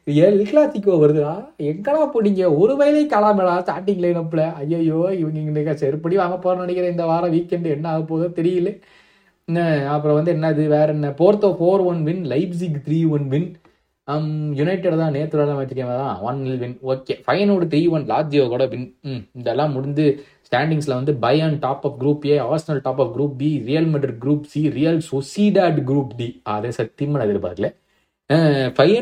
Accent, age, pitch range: native, 20-39, 130-175 Hz